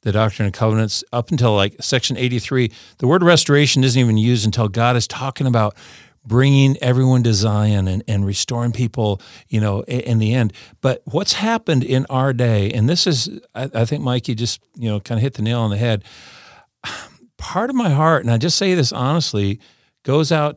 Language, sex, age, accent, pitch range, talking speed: English, male, 50-69, American, 110-130 Hz, 205 wpm